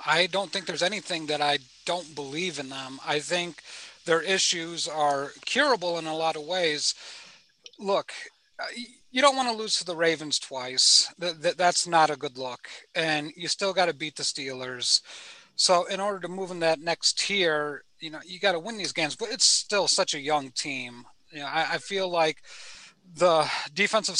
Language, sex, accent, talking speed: English, male, American, 190 wpm